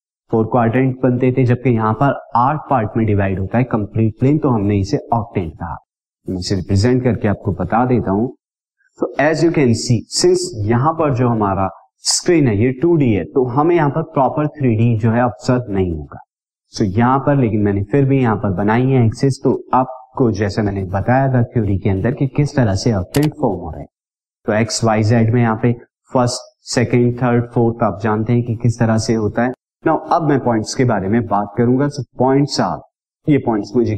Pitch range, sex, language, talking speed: 110-140 Hz, male, Hindi, 180 wpm